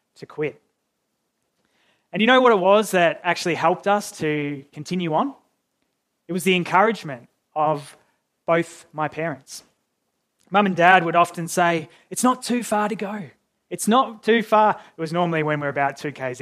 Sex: male